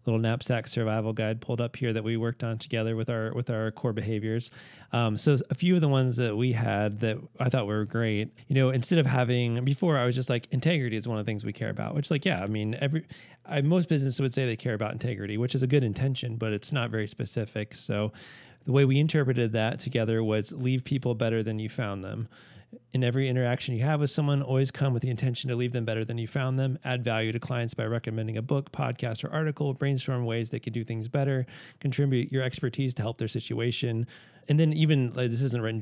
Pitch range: 110-130 Hz